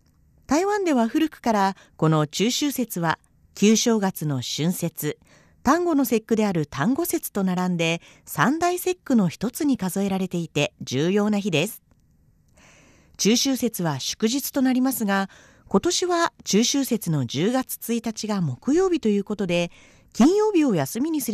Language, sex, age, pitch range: Japanese, female, 40-59, 180-270 Hz